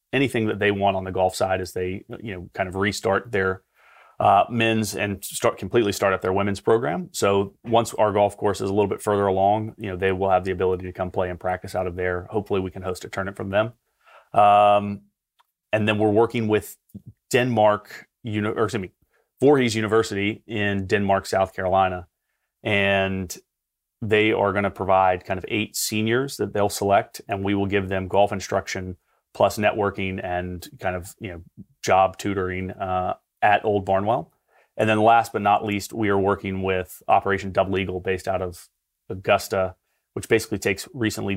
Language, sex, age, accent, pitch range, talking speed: English, male, 30-49, American, 95-110 Hz, 195 wpm